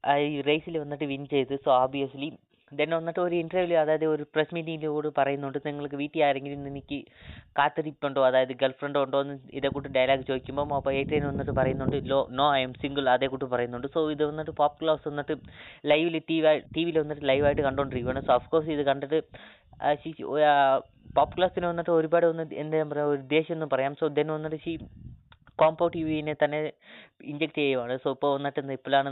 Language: Malayalam